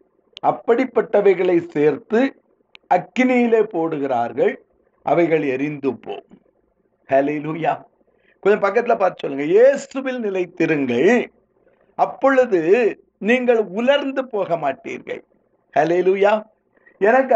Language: Tamil